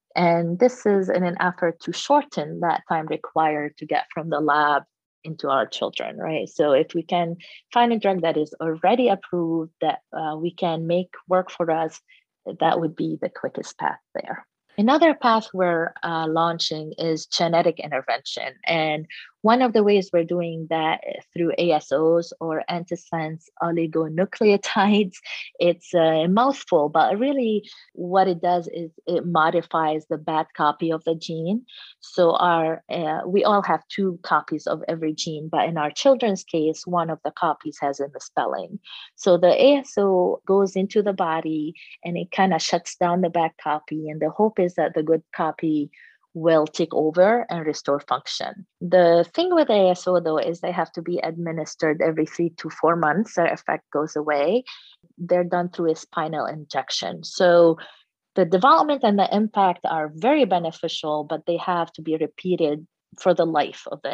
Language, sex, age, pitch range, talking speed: English, female, 30-49, 160-190 Hz, 170 wpm